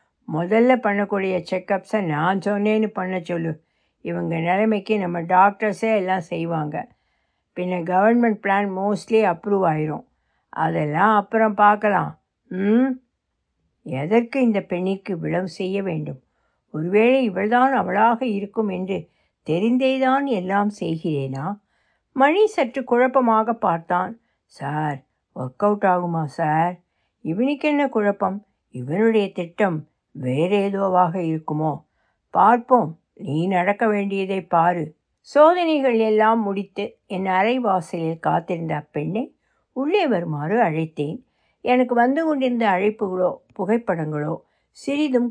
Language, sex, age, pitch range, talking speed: Tamil, female, 60-79, 170-225 Hz, 95 wpm